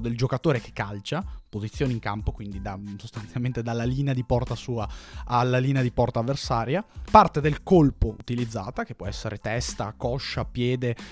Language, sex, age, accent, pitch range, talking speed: Italian, male, 20-39, native, 115-150 Hz, 160 wpm